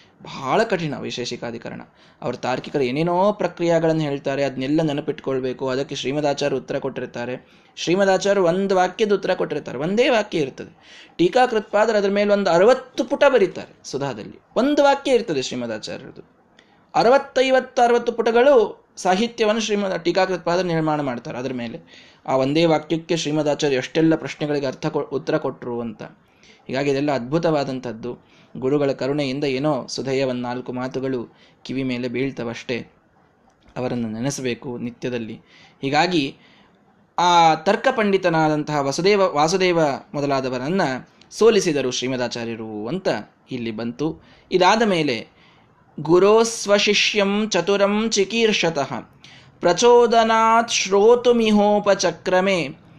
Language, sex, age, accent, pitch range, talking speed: Kannada, male, 20-39, native, 130-200 Hz, 95 wpm